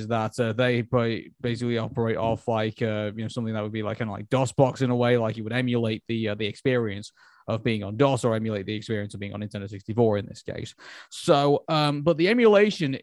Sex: male